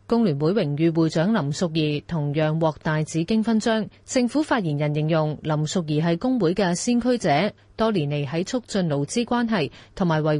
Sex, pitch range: female, 155-215 Hz